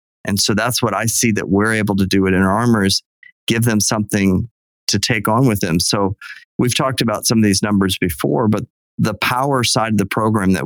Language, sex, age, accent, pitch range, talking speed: English, male, 40-59, American, 95-115 Hz, 220 wpm